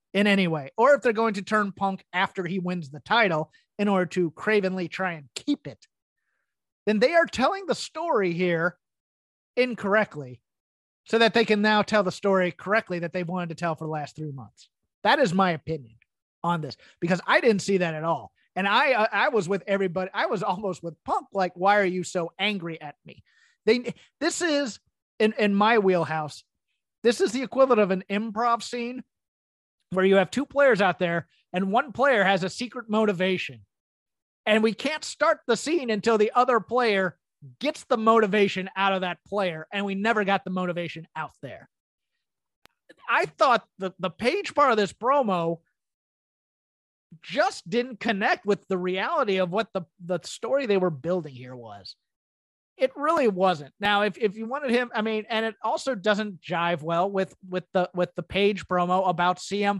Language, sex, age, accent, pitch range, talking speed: English, male, 30-49, American, 175-225 Hz, 185 wpm